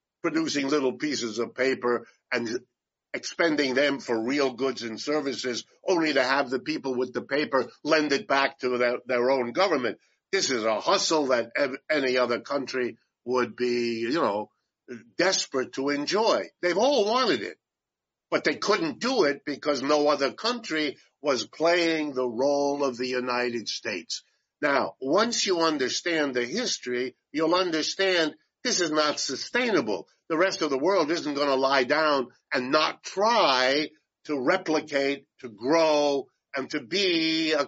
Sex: male